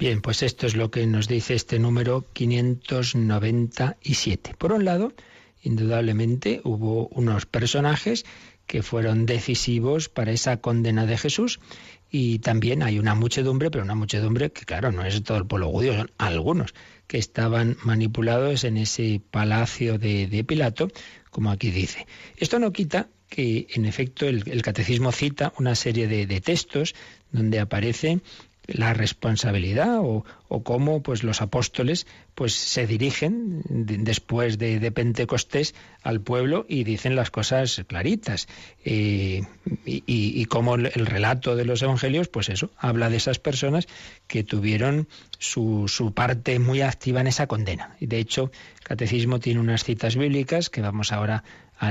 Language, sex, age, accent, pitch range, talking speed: Spanish, male, 40-59, Spanish, 110-130 Hz, 155 wpm